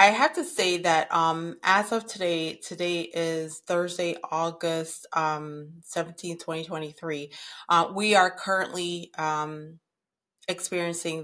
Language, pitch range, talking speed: English, 150-165 Hz, 120 wpm